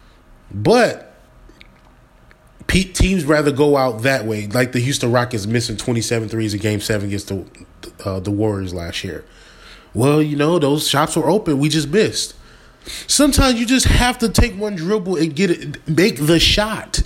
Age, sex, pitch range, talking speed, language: 20-39, male, 110-150 Hz, 170 wpm, English